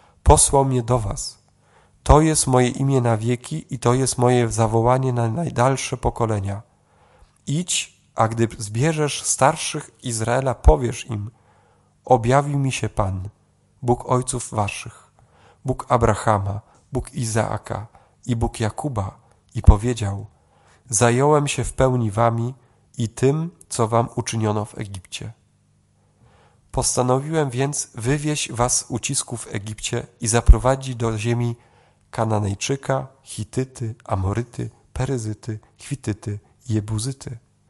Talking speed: 115 wpm